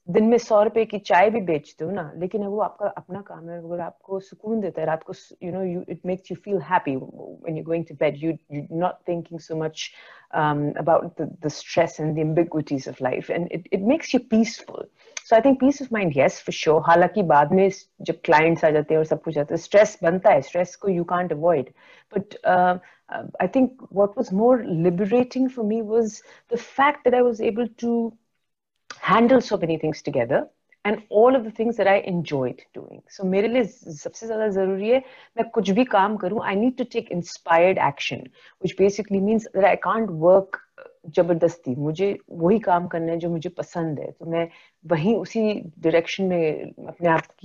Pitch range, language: 165-225 Hz, English